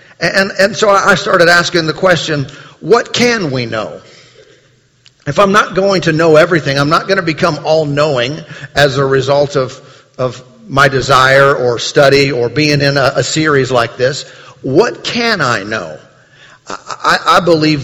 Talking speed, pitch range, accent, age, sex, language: 165 wpm, 140-175 Hz, American, 50-69, male, English